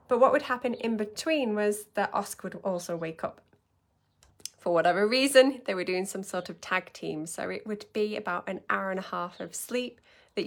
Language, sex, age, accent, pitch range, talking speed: English, female, 20-39, British, 185-240 Hz, 210 wpm